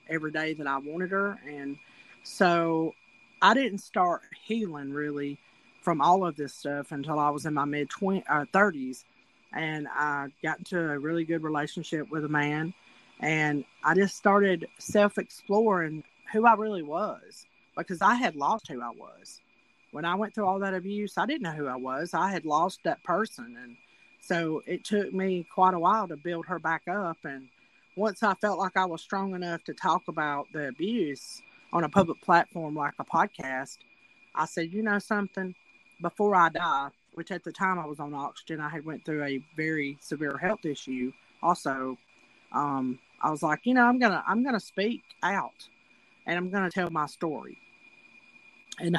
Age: 40-59